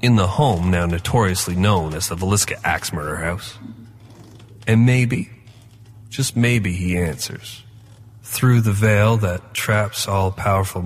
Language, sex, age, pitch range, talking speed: English, male, 30-49, 95-115 Hz, 140 wpm